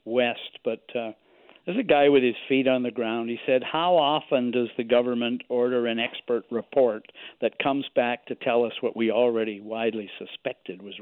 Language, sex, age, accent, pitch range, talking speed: English, male, 50-69, American, 120-150 Hz, 190 wpm